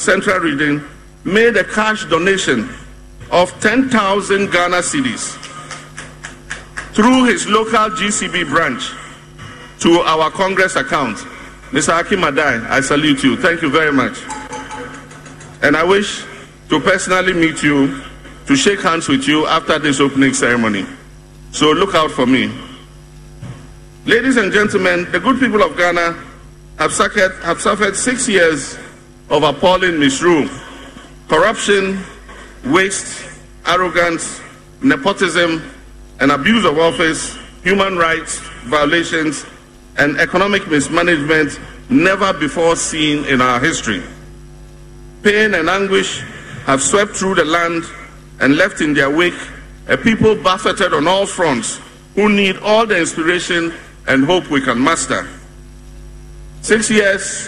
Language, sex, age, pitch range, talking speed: English, male, 50-69, 155-200 Hz, 120 wpm